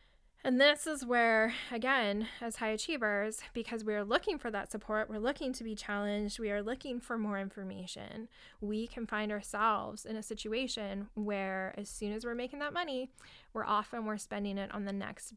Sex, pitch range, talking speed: female, 200-240 Hz, 190 wpm